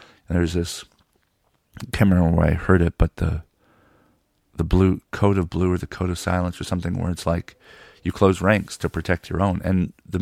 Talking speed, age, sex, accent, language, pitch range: 210 wpm, 40-59, male, American, English, 85-95 Hz